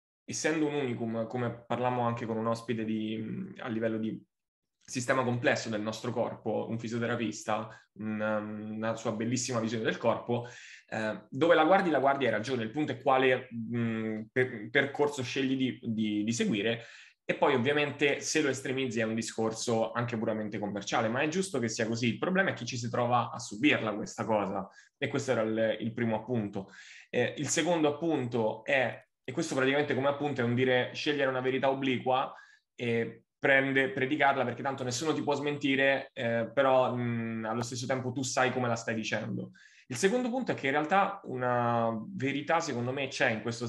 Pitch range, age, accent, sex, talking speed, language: 115-135 Hz, 20-39, native, male, 180 wpm, Italian